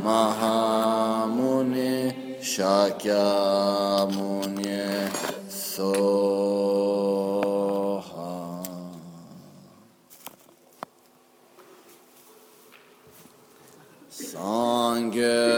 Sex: male